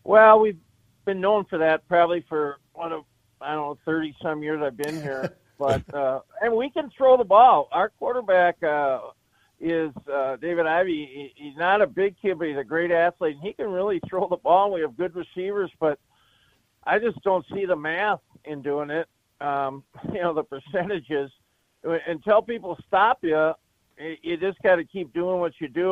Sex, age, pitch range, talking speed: male, 50-69, 145-180 Hz, 195 wpm